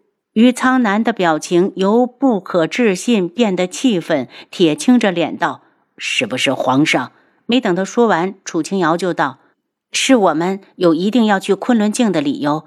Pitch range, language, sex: 170-225 Hz, Chinese, female